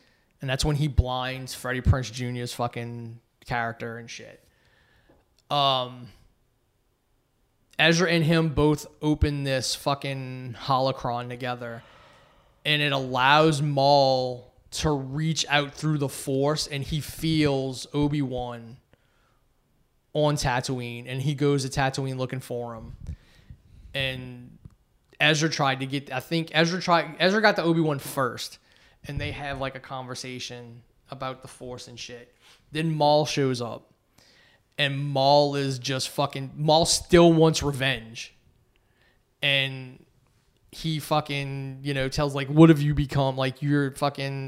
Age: 20-39